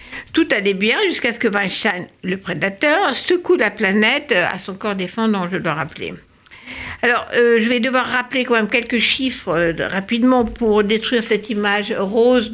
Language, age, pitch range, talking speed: French, 60-79, 180-230 Hz, 170 wpm